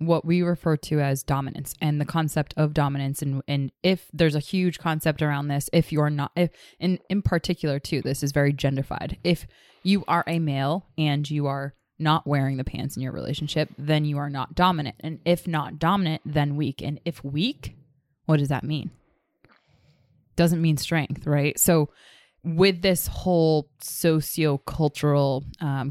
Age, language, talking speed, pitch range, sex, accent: 20-39, English, 175 wpm, 140-165 Hz, female, American